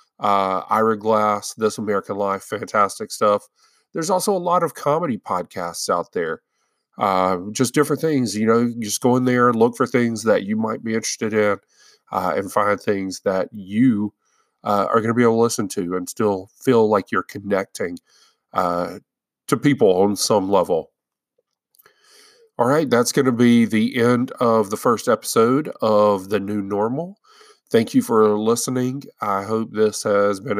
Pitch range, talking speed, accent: 105-140 Hz, 175 wpm, American